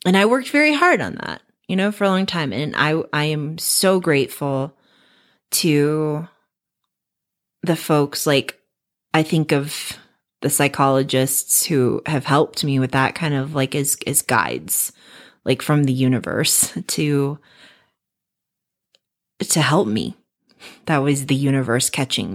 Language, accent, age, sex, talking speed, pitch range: English, American, 30-49, female, 140 wpm, 135-165 Hz